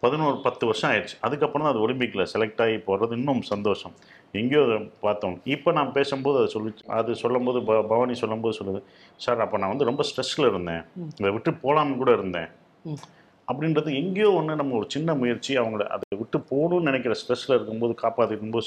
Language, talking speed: Tamil, 175 wpm